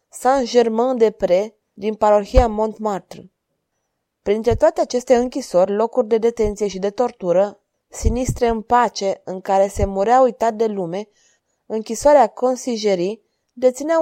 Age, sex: 20-39, female